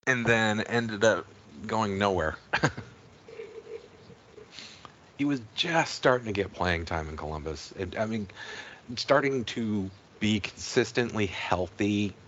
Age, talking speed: 40-59, 110 wpm